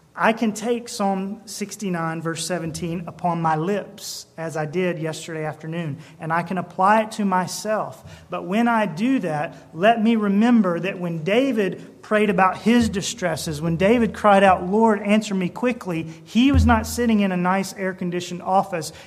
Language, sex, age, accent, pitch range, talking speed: English, male, 30-49, American, 165-205 Hz, 170 wpm